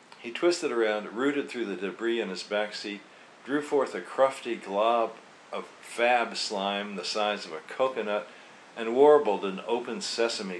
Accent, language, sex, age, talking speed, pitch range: American, English, male, 50-69, 165 wpm, 105-130 Hz